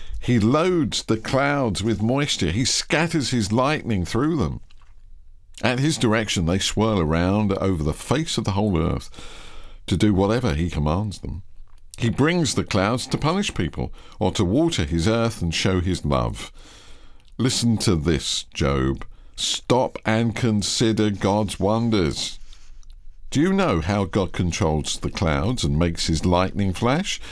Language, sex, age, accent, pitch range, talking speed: English, male, 50-69, British, 85-115 Hz, 150 wpm